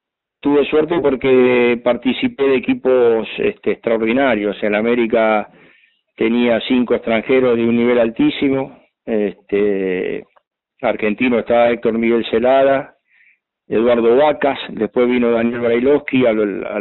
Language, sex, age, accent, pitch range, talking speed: Spanish, male, 40-59, Argentinian, 115-135 Hz, 115 wpm